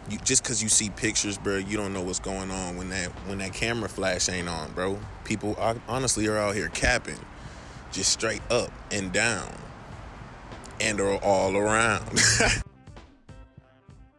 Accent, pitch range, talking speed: American, 100-125 Hz, 160 wpm